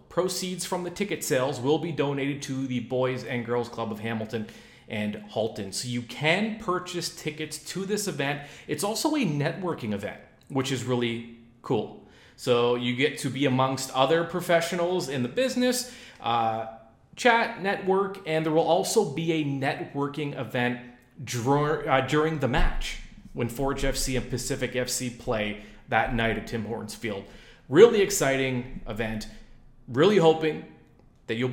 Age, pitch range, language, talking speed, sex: 30-49, 120-160 Hz, English, 155 wpm, male